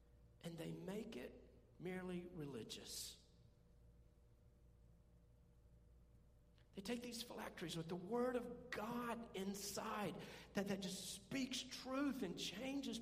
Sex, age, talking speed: male, 50-69, 105 wpm